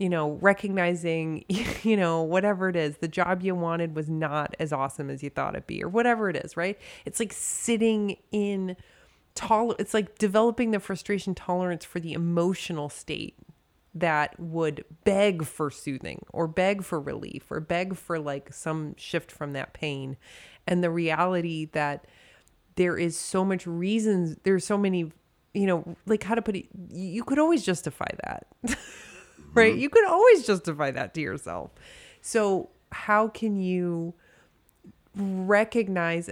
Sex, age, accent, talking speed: female, 30-49, American, 155 wpm